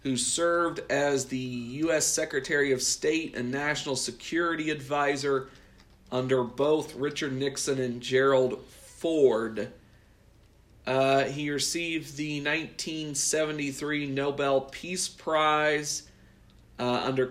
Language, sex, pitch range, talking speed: English, male, 125-155 Hz, 100 wpm